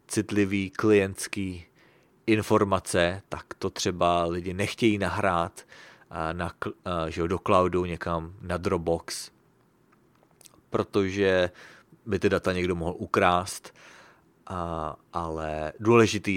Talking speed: 90 wpm